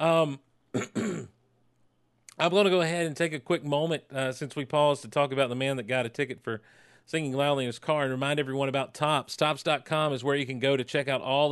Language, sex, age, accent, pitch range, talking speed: English, male, 40-59, American, 135-165 Hz, 235 wpm